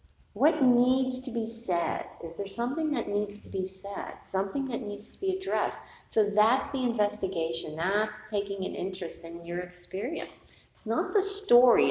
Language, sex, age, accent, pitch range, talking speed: English, female, 50-69, American, 170-235 Hz, 170 wpm